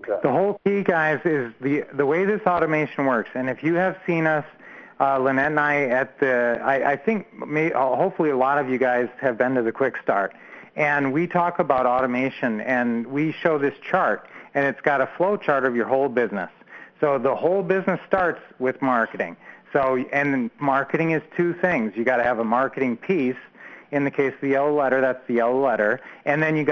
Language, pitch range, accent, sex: English, 130-160 Hz, American, male